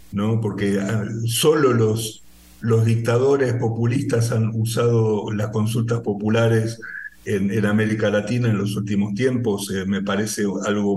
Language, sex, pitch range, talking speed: Spanish, male, 110-135 Hz, 125 wpm